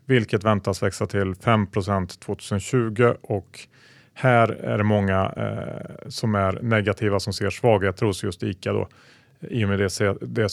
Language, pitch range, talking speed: Swedish, 100-125 Hz, 160 wpm